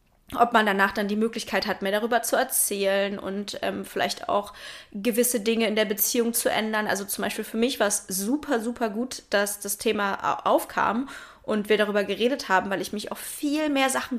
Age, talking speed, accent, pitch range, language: 20-39, 205 wpm, German, 205-240 Hz, German